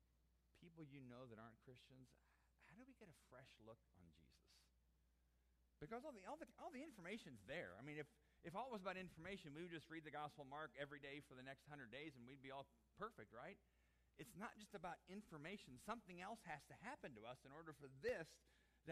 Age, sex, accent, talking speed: 40-59, male, American, 220 wpm